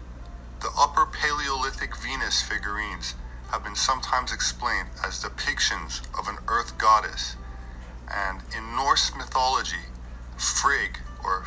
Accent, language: American, English